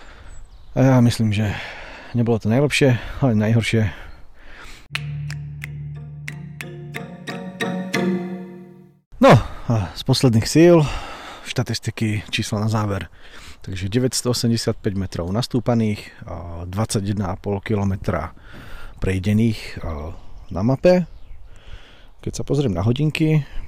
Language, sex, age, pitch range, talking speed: Slovak, male, 40-59, 95-120 Hz, 85 wpm